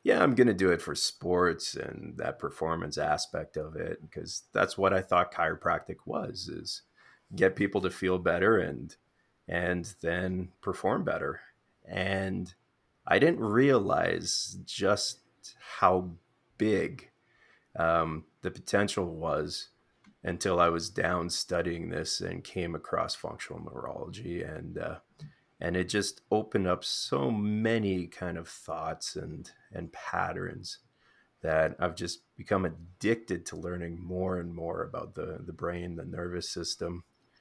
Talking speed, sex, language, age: 140 wpm, male, English, 30-49